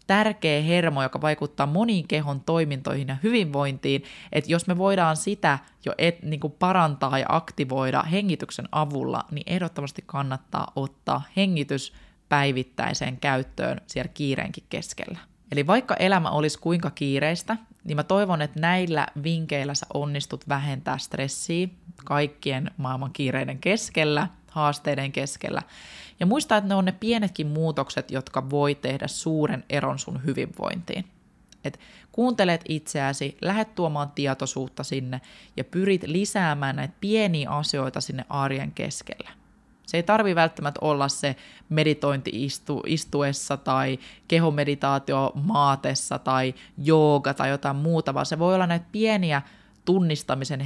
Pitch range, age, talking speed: 140-180 Hz, 20-39, 130 wpm